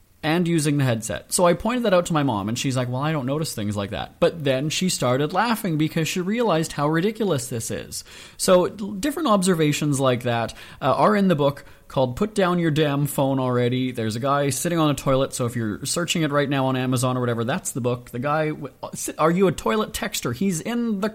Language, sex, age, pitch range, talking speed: English, male, 30-49, 140-200 Hz, 235 wpm